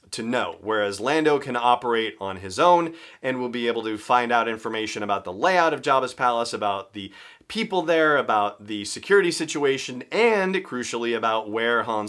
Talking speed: 180 wpm